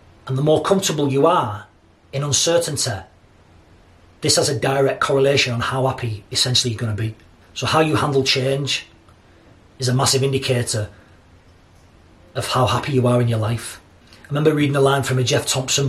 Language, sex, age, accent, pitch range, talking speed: English, male, 30-49, British, 105-140 Hz, 180 wpm